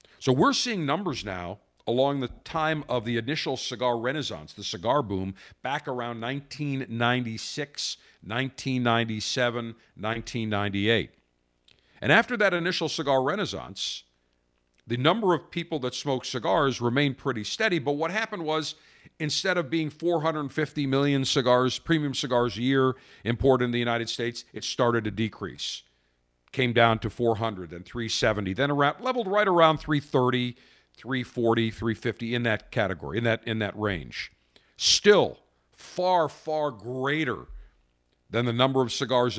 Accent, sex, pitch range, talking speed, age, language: American, male, 105-140 Hz, 140 wpm, 50-69, English